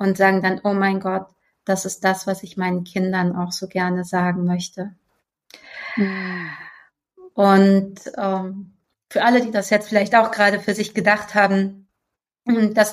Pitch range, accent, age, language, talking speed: 175-200 Hz, German, 30-49, German, 155 wpm